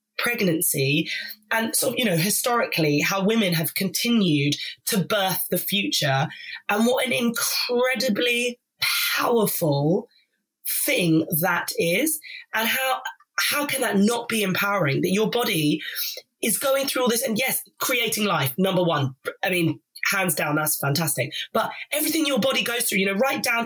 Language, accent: English, British